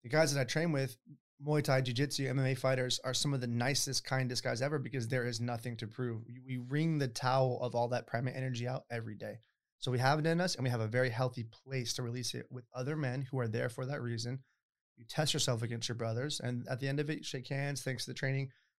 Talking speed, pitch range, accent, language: 260 wpm, 120-140 Hz, American, English